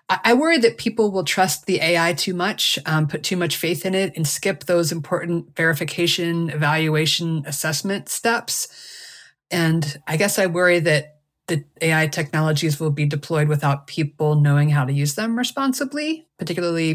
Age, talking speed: 30-49, 165 wpm